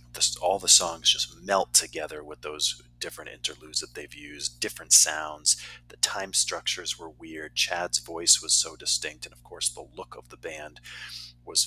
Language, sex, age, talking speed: English, male, 40-59, 175 wpm